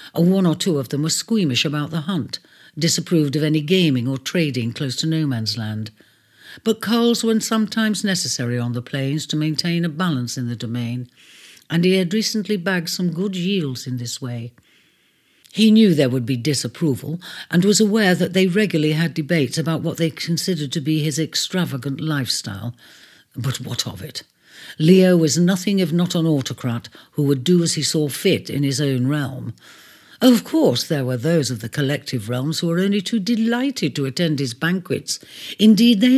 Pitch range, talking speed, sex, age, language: 130-185 Hz, 185 wpm, female, 60-79, English